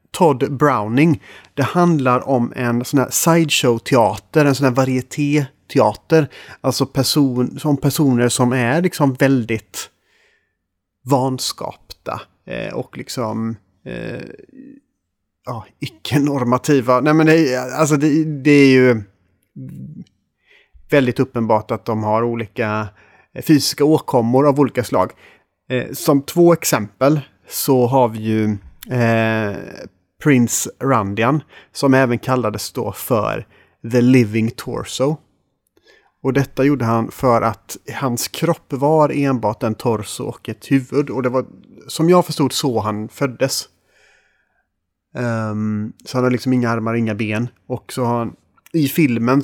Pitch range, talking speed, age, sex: 110-140 Hz, 120 wpm, 30-49, male